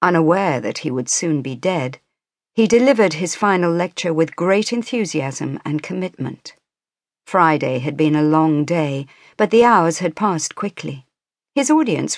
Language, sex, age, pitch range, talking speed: English, female, 50-69, 150-200 Hz, 155 wpm